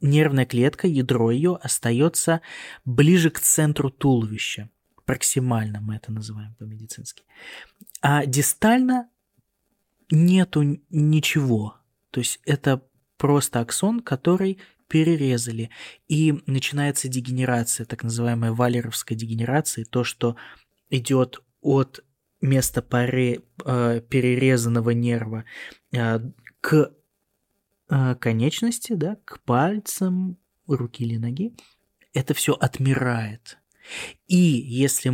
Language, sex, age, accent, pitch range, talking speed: Russian, male, 20-39, native, 120-150 Hz, 90 wpm